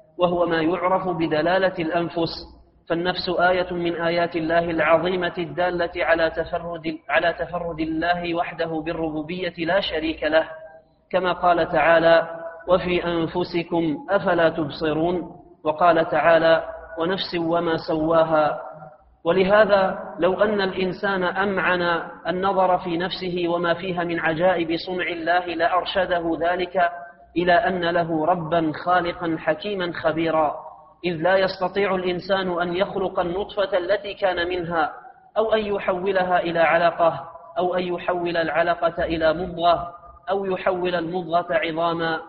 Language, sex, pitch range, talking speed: Arabic, male, 165-185 Hz, 115 wpm